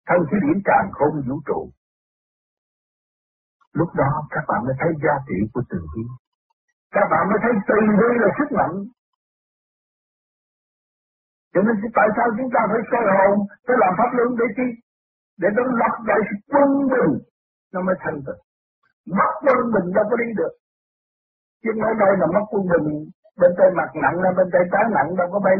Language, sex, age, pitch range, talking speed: Vietnamese, male, 60-79, 135-215 Hz, 180 wpm